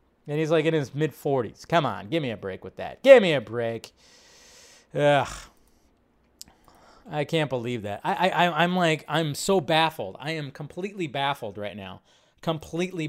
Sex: male